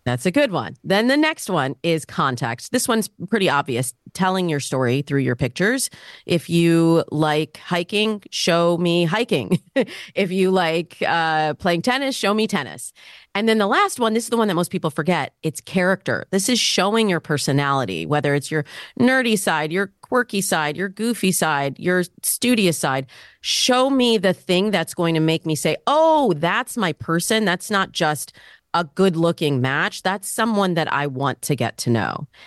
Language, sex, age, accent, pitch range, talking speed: English, female, 30-49, American, 150-195 Hz, 185 wpm